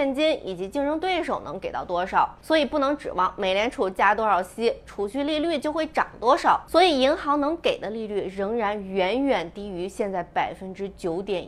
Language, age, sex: Chinese, 20-39, female